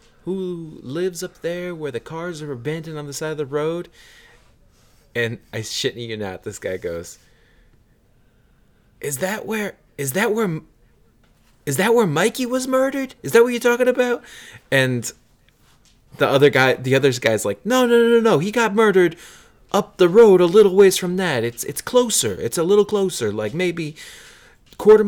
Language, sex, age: English, male, 20-39